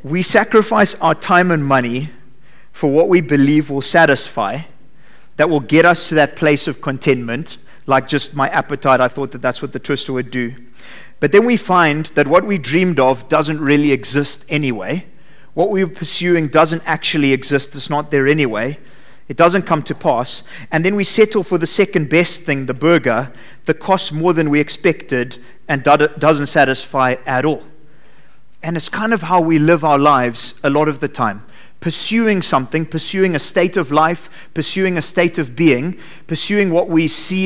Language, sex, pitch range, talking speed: English, male, 140-175 Hz, 185 wpm